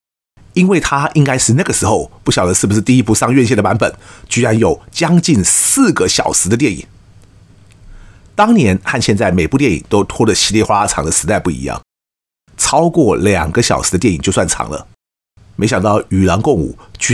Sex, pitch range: male, 95-140 Hz